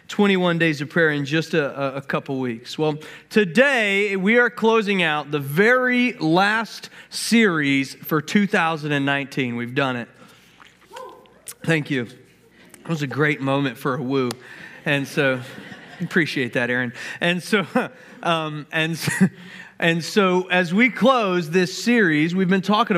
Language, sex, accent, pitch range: English, male, American, 155-205 Hz